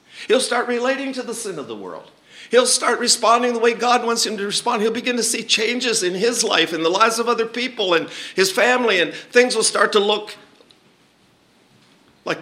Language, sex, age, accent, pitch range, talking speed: English, male, 50-69, American, 160-230 Hz, 210 wpm